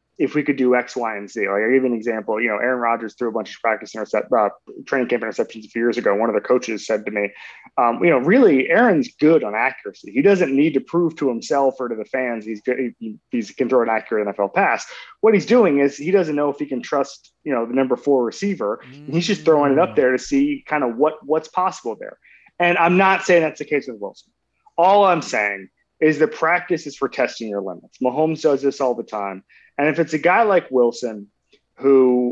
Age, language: 30-49, English